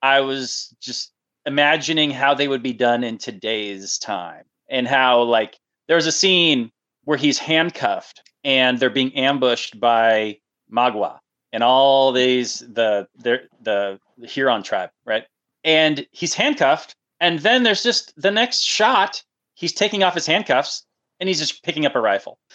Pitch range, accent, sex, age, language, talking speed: 125-160 Hz, American, male, 30-49, English, 150 wpm